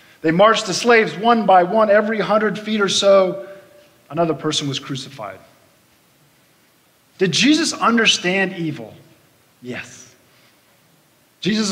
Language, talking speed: English, 115 wpm